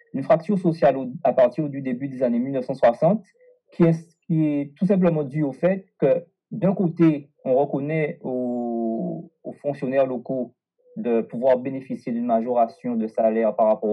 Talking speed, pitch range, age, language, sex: 145 wpm, 125-195 Hz, 40-59, French, male